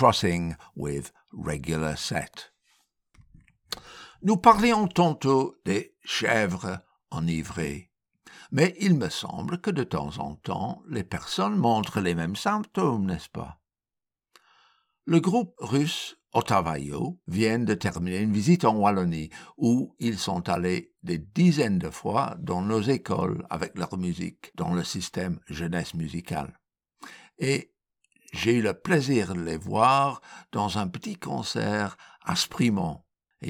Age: 60-79